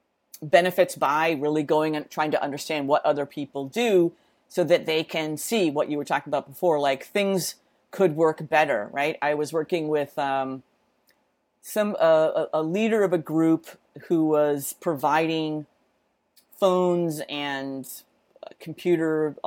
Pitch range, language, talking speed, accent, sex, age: 145-175 Hz, English, 145 wpm, American, female, 40-59